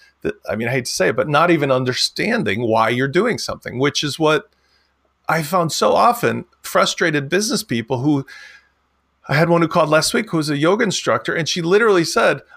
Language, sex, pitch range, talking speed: English, male, 145-195 Hz, 205 wpm